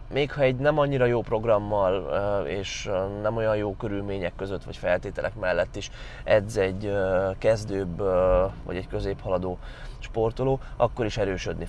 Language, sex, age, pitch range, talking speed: Hungarian, male, 20-39, 105-130 Hz, 140 wpm